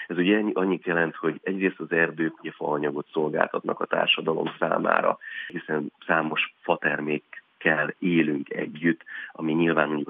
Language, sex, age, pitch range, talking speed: Hungarian, male, 30-49, 75-85 Hz, 125 wpm